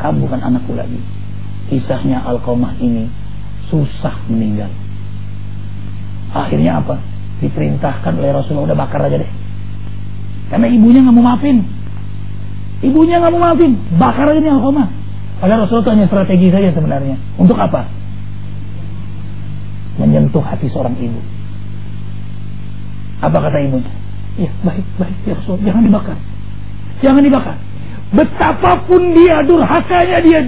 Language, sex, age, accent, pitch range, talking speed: English, male, 40-59, Indonesian, 100-150 Hz, 115 wpm